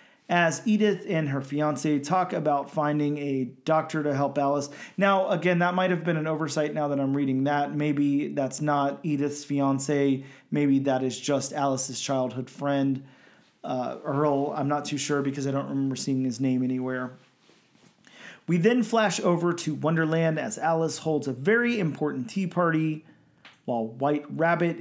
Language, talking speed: English, 165 wpm